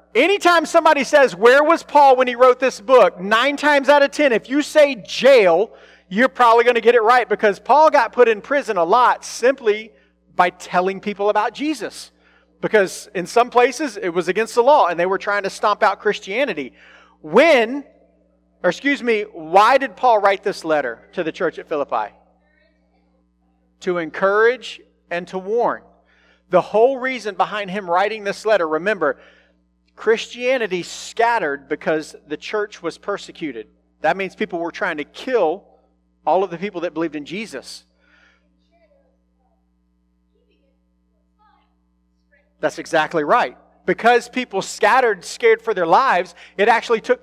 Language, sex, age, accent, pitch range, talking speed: English, male, 40-59, American, 165-250 Hz, 155 wpm